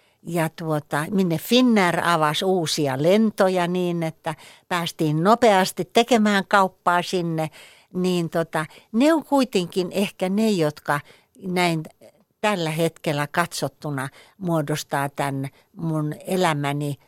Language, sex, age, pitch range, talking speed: Finnish, female, 60-79, 150-185 Hz, 105 wpm